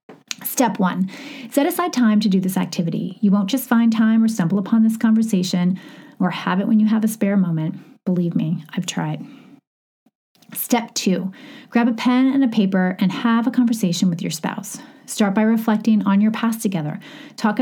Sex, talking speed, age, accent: female, 185 wpm, 30-49, American